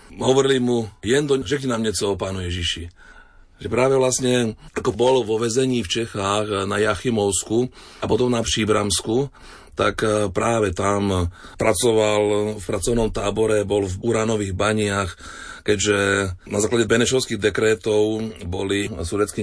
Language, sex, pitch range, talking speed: Slovak, male, 95-110 Hz, 135 wpm